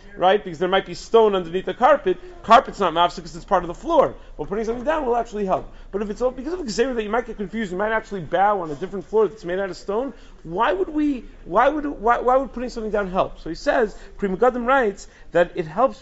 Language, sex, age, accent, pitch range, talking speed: English, male, 40-59, American, 170-220 Hz, 265 wpm